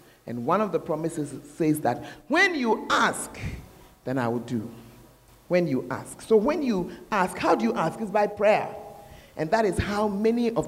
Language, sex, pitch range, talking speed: English, male, 145-215 Hz, 190 wpm